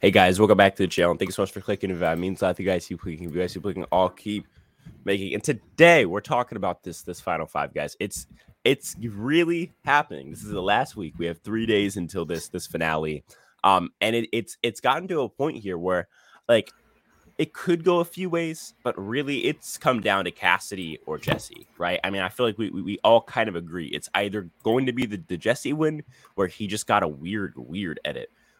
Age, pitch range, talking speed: 10-29, 85-115 Hz, 245 wpm